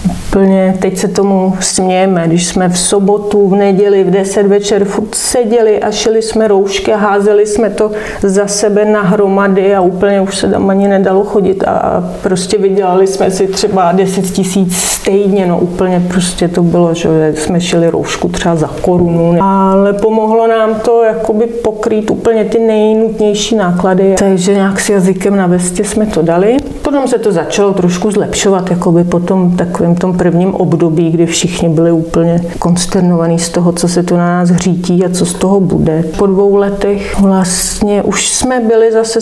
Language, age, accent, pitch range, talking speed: Czech, 40-59, native, 180-215 Hz, 175 wpm